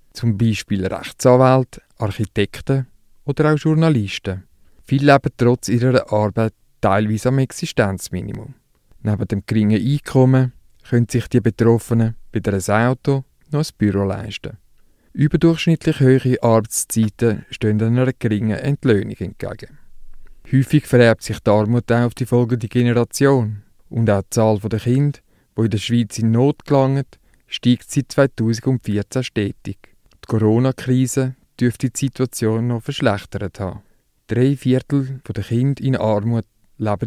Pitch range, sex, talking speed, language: 110-130 Hz, male, 130 wpm, English